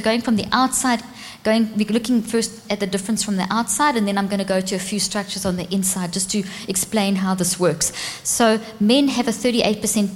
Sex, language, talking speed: female, English, 225 wpm